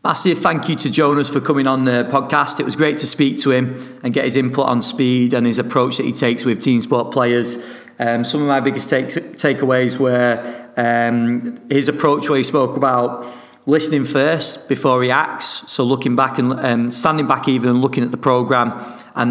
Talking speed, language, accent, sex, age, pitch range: 205 wpm, English, British, male, 40-59, 120-140 Hz